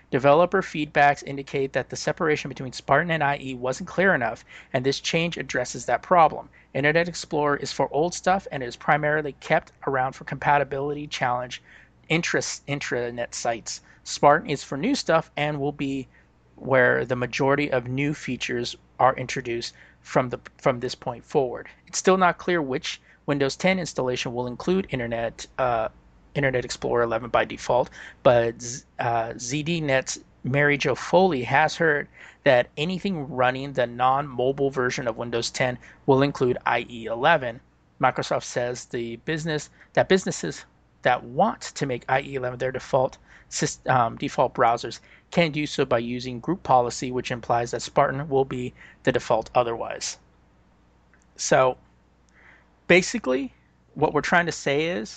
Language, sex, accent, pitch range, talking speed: English, male, American, 125-150 Hz, 145 wpm